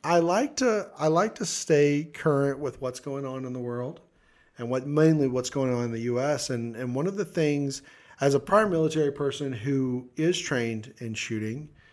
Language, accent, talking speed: English, American, 200 wpm